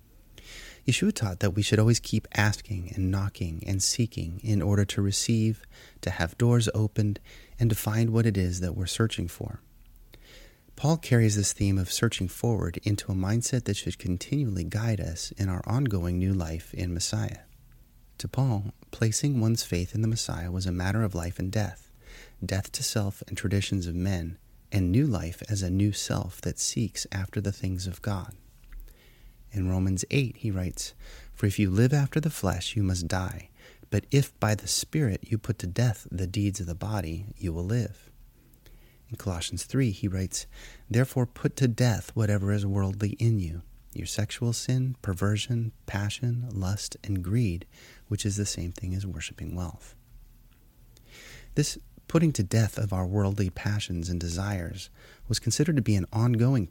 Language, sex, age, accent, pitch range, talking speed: English, male, 30-49, American, 95-115 Hz, 175 wpm